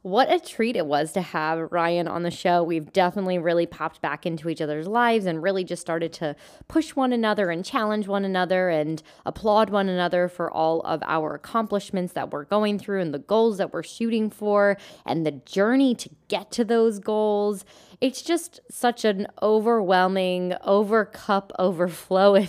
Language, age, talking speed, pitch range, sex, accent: English, 10-29, 180 wpm, 165-210 Hz, female, American